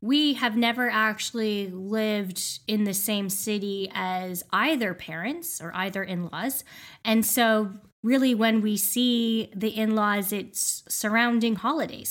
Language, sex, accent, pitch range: English, female, American, 195-245 Hz